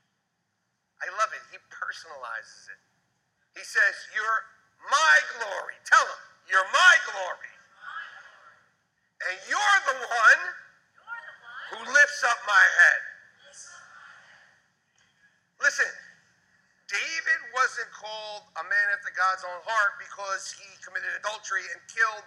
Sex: male